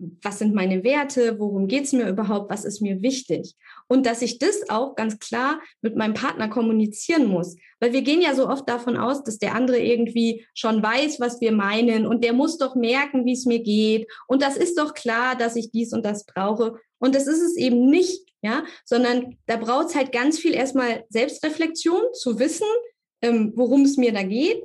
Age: 20-39